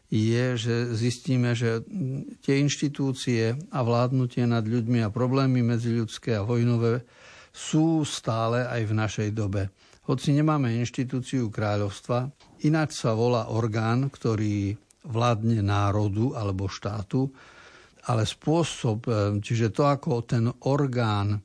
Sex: male